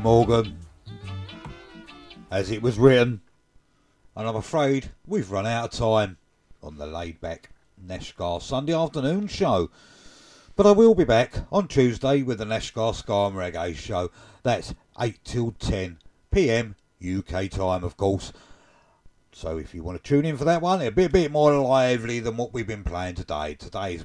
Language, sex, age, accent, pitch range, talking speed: English, male, 50-69, British, 90-125 Hz, 165 wpm